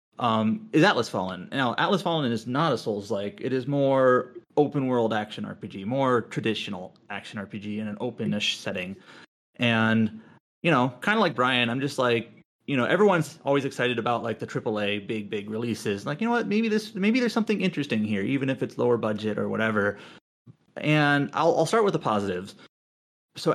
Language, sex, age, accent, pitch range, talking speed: English, male, 30-49, American, 110-155 Hz, 185 wpm